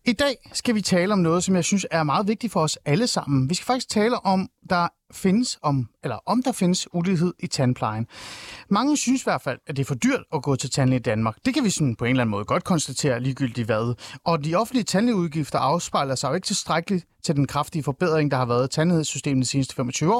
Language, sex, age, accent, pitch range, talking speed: Danish, male, 30-49, native, 140-225 Hz, 245 wpm